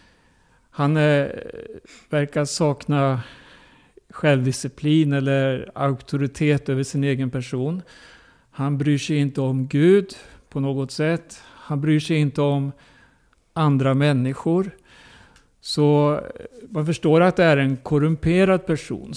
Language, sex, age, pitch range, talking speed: Swedish, male, 60-79, 135-170 Hz, 110 wpm